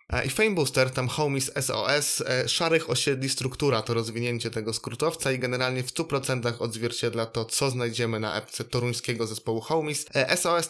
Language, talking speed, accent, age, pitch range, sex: Polish, 150 wpm, native, 20-39, 120-145 Hz, male